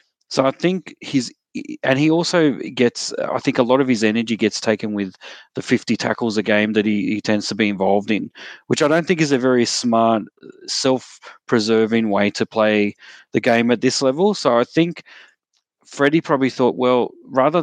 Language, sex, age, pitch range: English, male, 30-49, 110-130 Hz